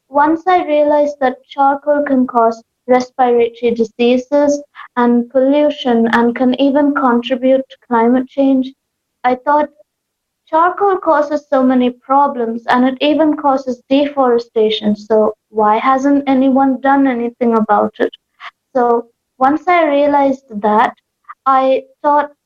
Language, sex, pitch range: English, female, 240-290 Hz